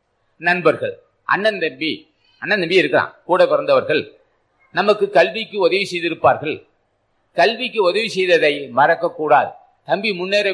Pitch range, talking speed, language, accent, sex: 165-220 Hz, 110 wpm, Tamil, native, male